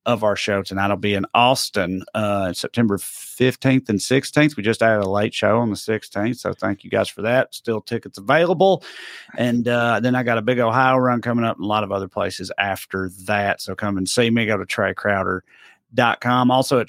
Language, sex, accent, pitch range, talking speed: English, male, American, 105-135 Hz, 210 wpm